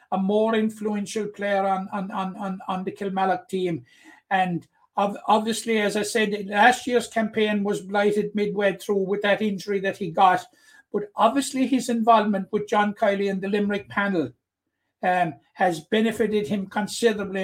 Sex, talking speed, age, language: male, 160 wpm, 60-79, English